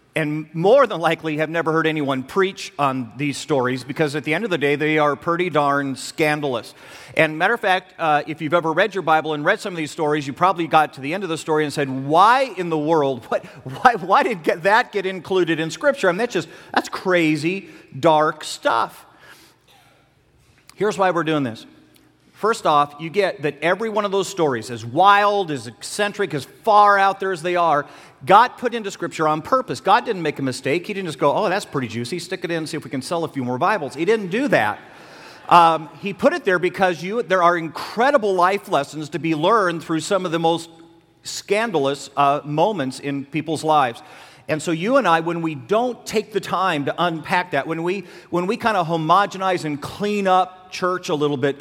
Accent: American